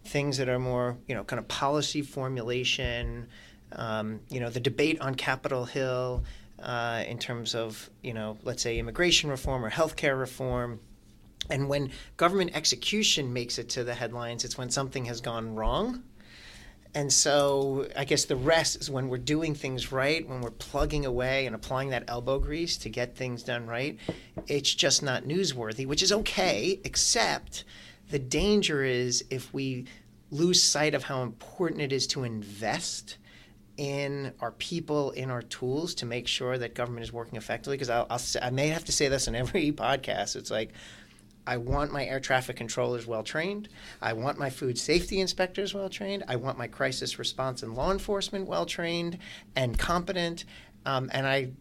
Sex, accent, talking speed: male, American, 170 wpm